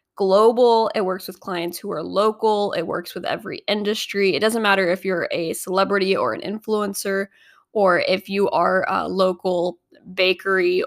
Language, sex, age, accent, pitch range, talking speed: English, female, 10-29, American, 185-230 Hz, 165 wpm